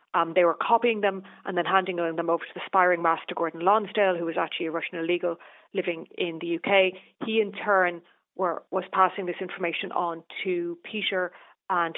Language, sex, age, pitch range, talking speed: English, female, 40-59, 170-200 Hz, 185 wpm